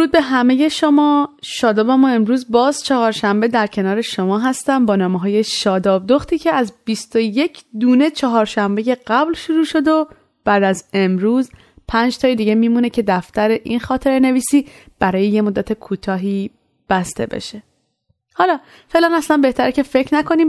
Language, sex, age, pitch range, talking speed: Persian, female, 30-49, 210-285 Hz, 150 wpm